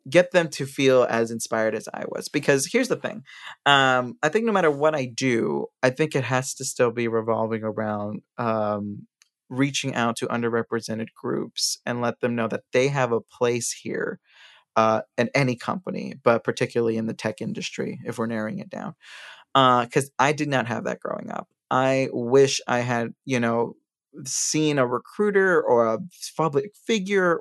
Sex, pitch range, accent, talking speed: male, 115-135 Hz, American, 180 wpm